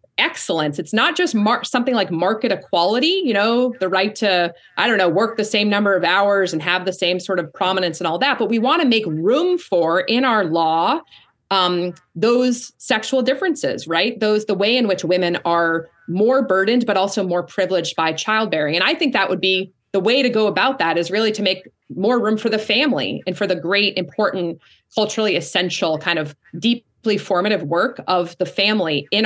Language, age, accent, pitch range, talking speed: English, 30-49, American, 170-220 Hz, 205 wpm